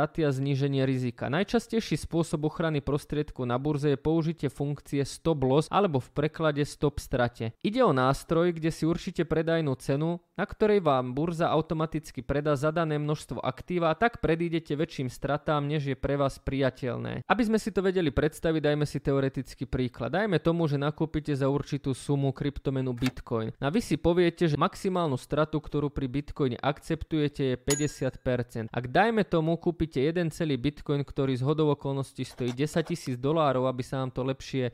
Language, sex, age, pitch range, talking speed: Slovak, male, 20-39, 135-165 Hz, 170 wpm